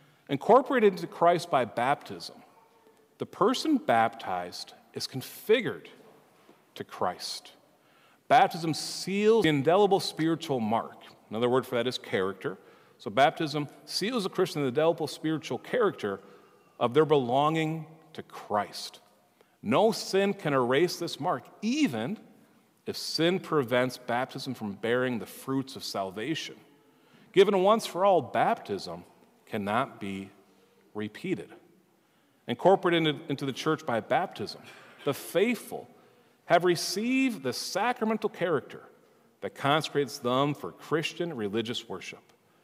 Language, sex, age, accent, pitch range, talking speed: English, male, 40-59, American, 130-180 Hz, 120 wpm